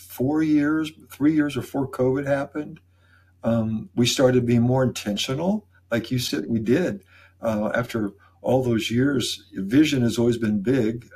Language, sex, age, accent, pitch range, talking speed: English, male, 60-79, American, 110-130 Hz, 150 wpm